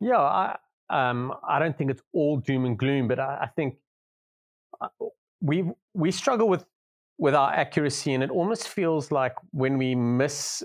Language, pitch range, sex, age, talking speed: English, 120-165 Hz, male, 30-49, 170 wpm